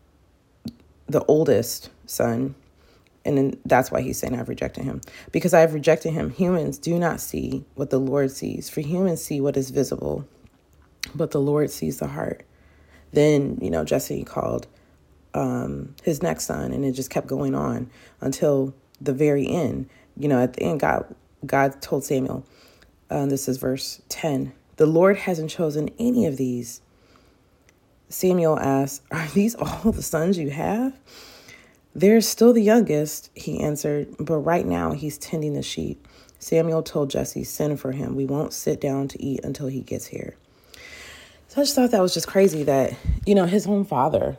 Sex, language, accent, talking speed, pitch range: female, English, American, 175 wpm, 120-160 Hz